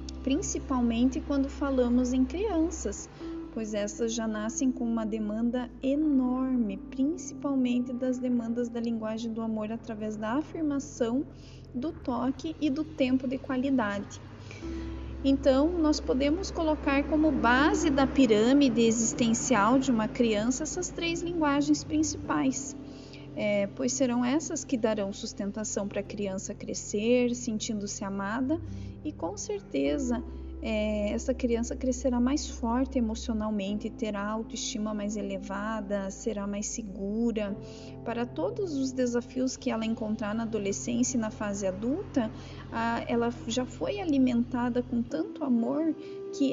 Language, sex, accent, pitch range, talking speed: Portuguese, female, Brazilian, 215-270 Hz, 125 wpm